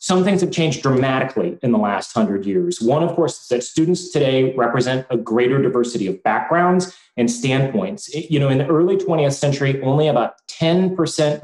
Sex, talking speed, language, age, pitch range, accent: male, 185 wpm, English, 30-49, 125-175 Hz, American